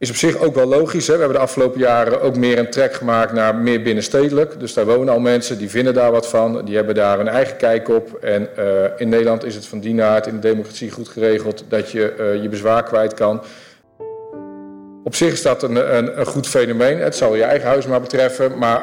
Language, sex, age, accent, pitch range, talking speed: Dutch, male, 50-69, Dutch, 110-125 Hz, 240 wpm